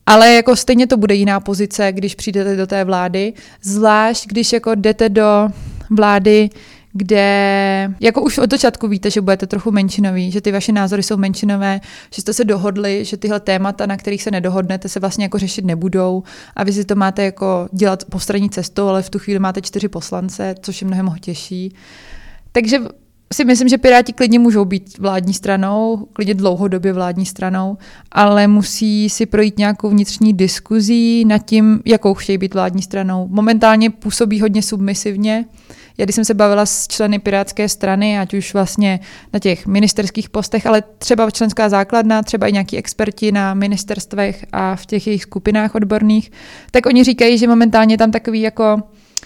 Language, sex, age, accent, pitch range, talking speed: Czech, female, 20-39, native, 195-220 Hz, 175 wpm